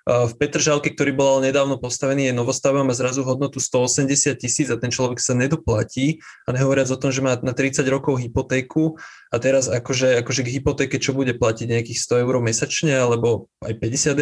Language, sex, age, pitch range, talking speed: Slovak, male, 20-39, 130-155 Hz, 185 wpm